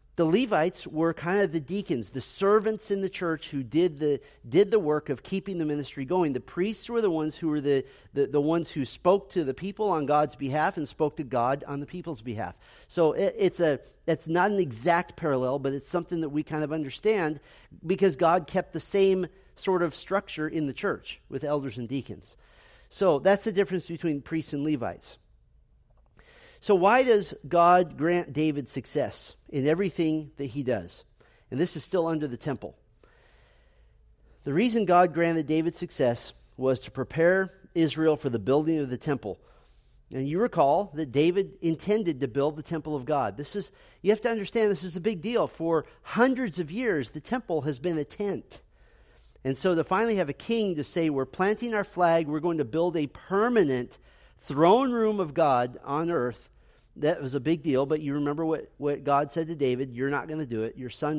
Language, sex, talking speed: English, male, 200 wpm